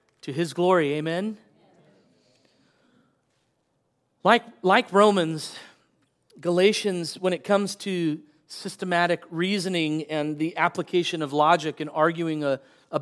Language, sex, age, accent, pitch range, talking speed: English, male, 40-59, American, 155-195 Hz, 105 wpm